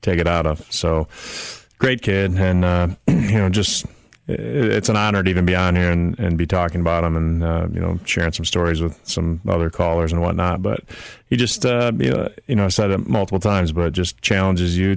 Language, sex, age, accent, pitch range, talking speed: English, male, 30-49, American, 80-95 Hz, 225 wpm